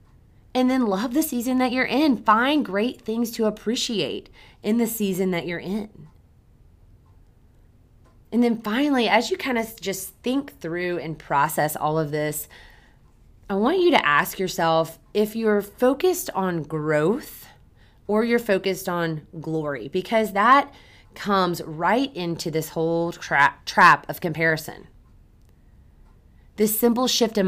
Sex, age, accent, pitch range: female, 20-39, American, 150-215 Hz